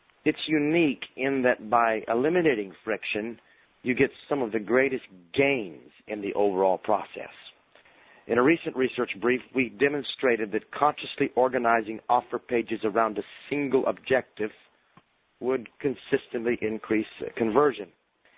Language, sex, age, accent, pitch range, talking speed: English, male, 40-59, American, 110-135 Hz, 125 wpm